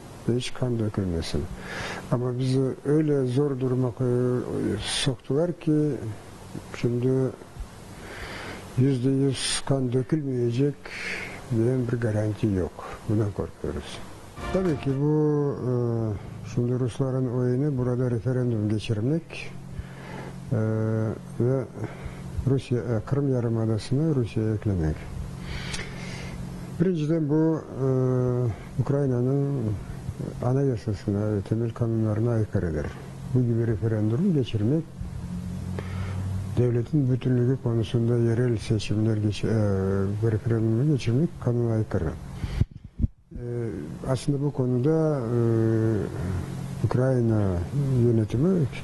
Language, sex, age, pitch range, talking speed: Turkish, male, 50-69, 105-135 Hz, 80 wpm